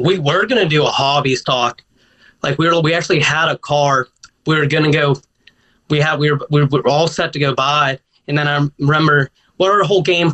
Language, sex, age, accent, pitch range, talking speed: English, male, 30-49, American, 135-160 Hz, 220 wpm